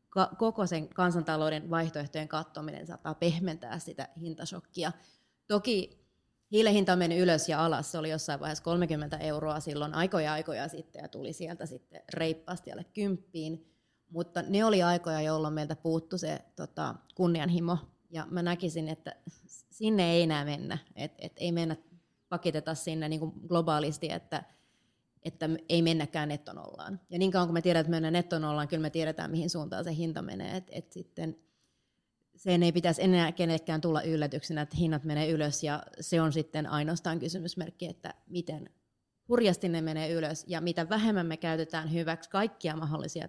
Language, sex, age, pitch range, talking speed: Finnish, female, 30-49, 155-175 Hz, 155 wpm